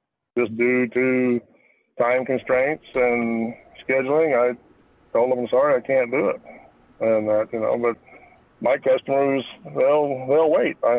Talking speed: 140 wpm